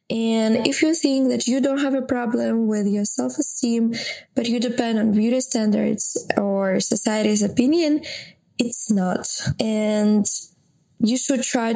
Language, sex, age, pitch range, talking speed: English, female, 20-39, 210-245 Hz, 145 wpm